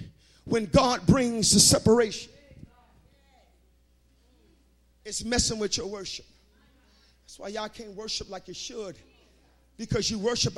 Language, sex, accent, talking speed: English, male, American, 120 wpm